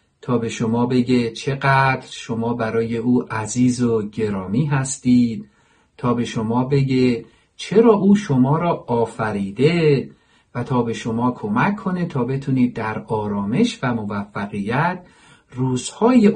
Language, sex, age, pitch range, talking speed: Persian, male, 50-69, 110-170 Hz, 125 wpm